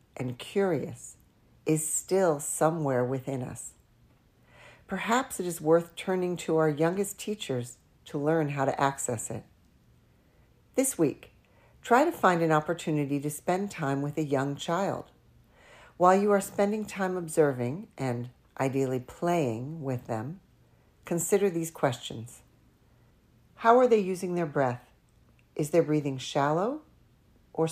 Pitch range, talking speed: 135-185 Hz, 130 wpm